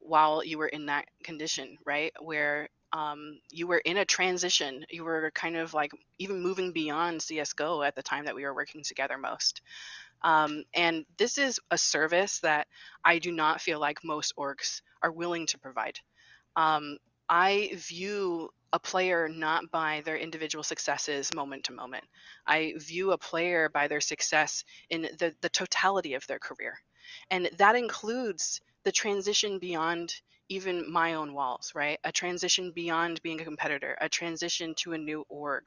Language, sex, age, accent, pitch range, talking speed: English, female, 20-39, American, 150-180 Hz, 170 wpm